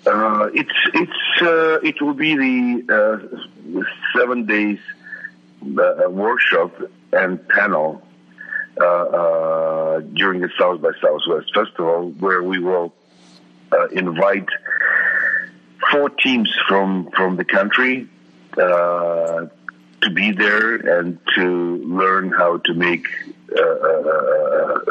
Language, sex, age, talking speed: English, male, 50-69, 110 wpm